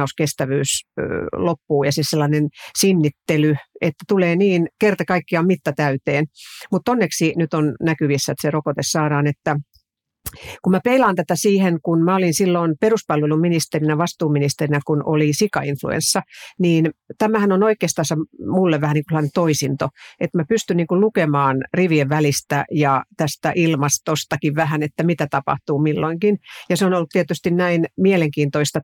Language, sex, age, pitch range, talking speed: Finnish, female, 50-69, 150-185 Hz, 140 wpm